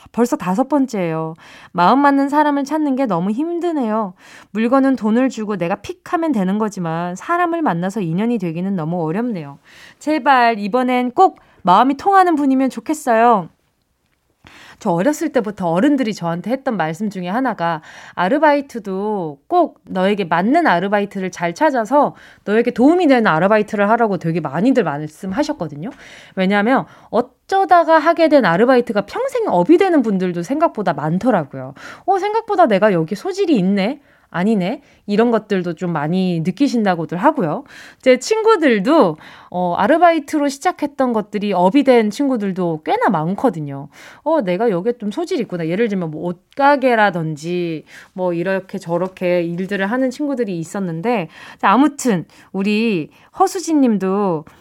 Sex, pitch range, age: female, 180-275 Hz, 20-39